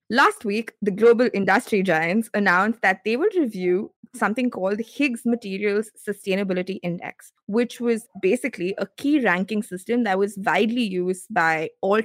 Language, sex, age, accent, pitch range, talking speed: English, female, 20-39, Indian, 190-245 Hz, 150 wpm